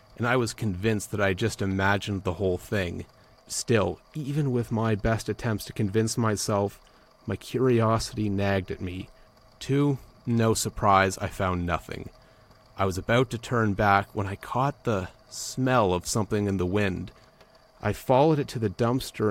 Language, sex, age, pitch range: English, male, 30-49, 100-125 Hz